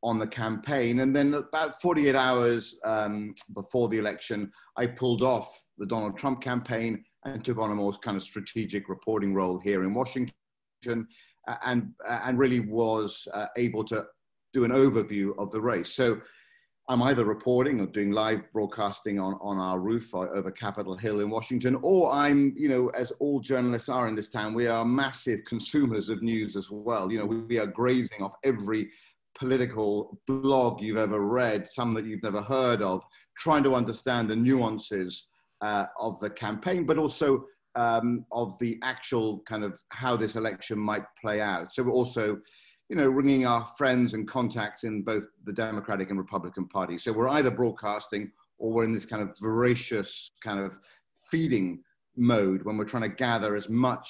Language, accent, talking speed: English, British, 180 wpm